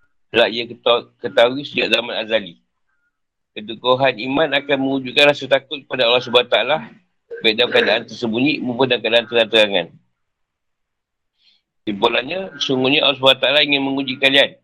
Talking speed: 140 wpm